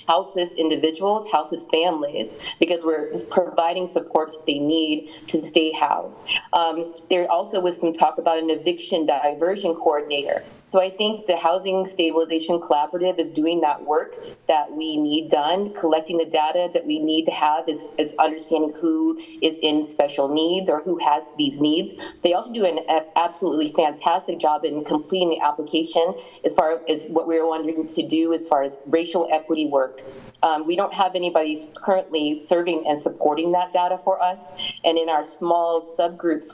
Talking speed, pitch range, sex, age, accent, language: 170 wpm, 155-175 Hz, female, 30-49, American, English